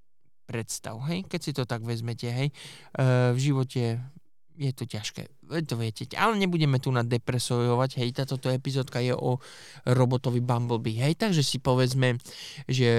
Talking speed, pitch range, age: 150 wpm, 120-135 Hz, 20-39